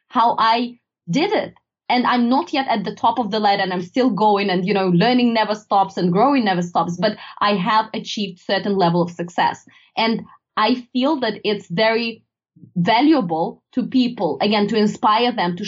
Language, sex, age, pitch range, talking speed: English, female, 20-39, 195-240 Hz, 190 wpm